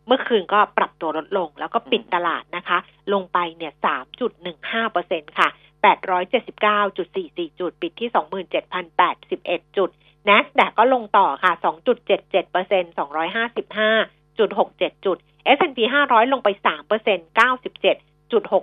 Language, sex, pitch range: Thai, female, 180-230 Hz